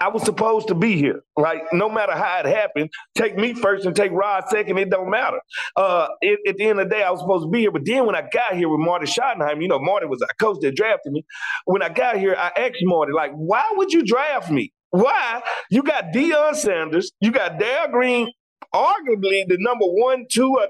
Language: English